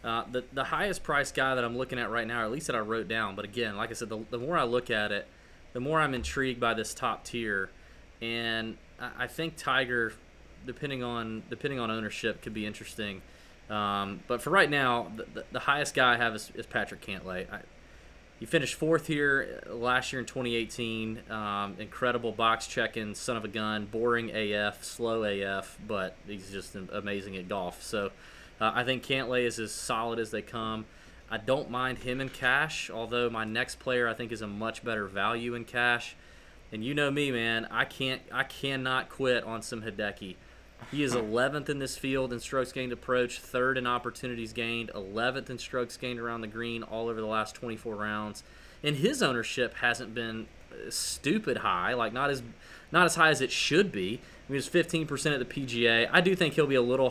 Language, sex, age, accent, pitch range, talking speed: English, male, 20-39, American, 110-130 Hz, 205 wpm